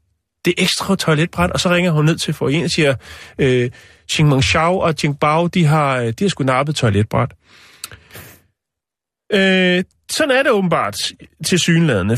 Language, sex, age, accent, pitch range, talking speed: Danish, male, 30-49, native, 120-170 Hz, 155 wpm